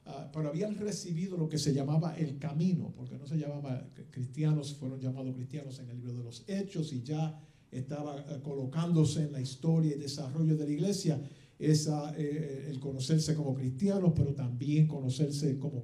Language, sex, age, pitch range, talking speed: English, male, 50-69, 135-165 Hz, 170 wpm